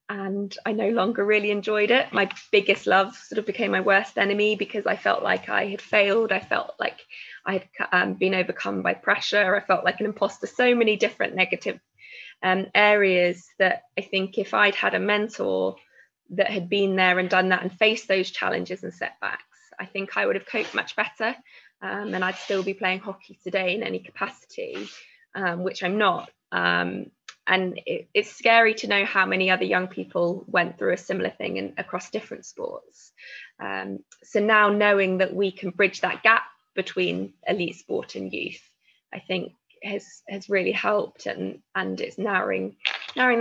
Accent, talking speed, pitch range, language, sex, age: British, 185 wpm, 180-210 Hz, English, female, 20-39